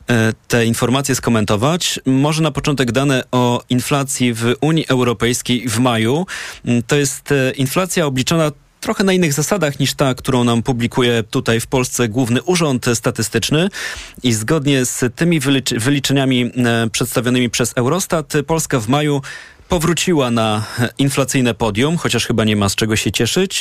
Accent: native